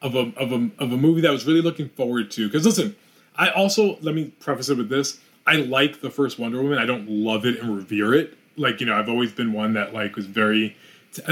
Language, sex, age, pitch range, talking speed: English, male, 20-39, 120-160 Hz, 260 wpm